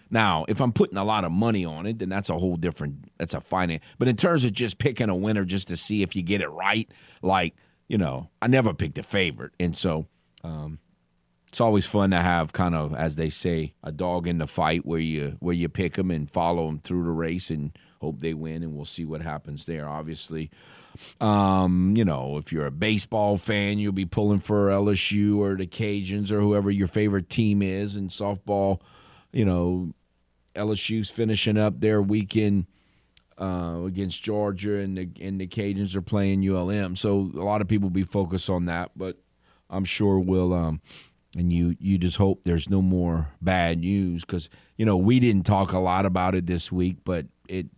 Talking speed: 210 wpm